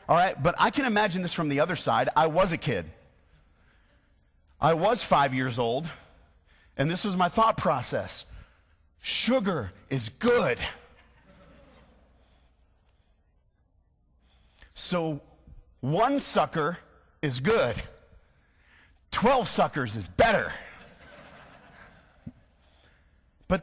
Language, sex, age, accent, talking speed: English, male, 40-59, American, 100 wpm